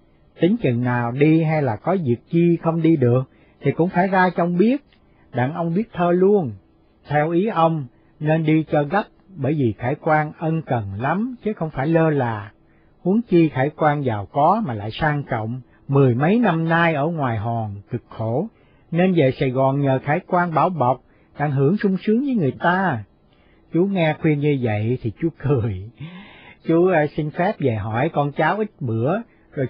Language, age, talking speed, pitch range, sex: Vietnamese, 60-79, 190 wpm, 130-175 Hz, male